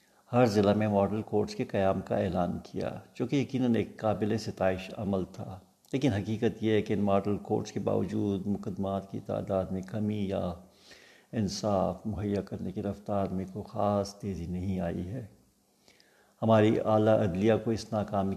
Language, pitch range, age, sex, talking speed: Urdu, 95-105 Hz, 60-79, male, 170 wpm